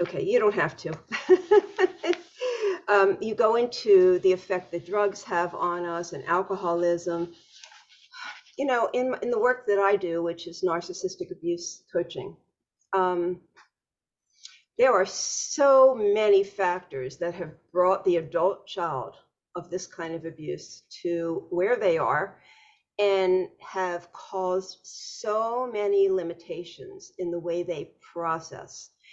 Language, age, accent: English, 50-69, American